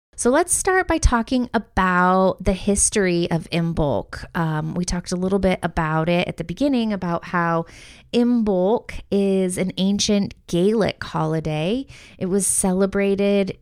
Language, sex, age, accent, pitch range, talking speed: English, female, 20-39, American, 175-215 Hz, 140 wpm